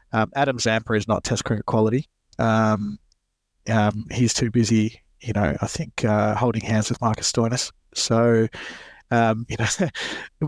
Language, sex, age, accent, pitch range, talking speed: English, male, 20-39, Australian, 115-130 Hz, 155 wpm